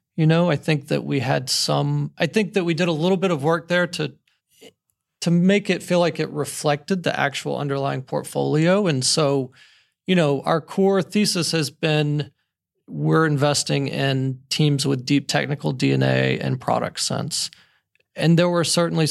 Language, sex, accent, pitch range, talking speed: English, male, American, 130-165 Hz, 175 wpm